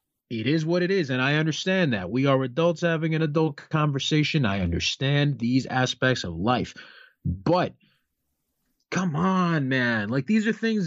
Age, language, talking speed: 30-49, English, 165 wpm